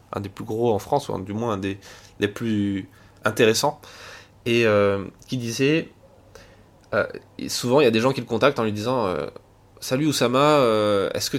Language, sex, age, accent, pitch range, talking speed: French, male, 20-39, French, 105-135 Hz, 205 wpm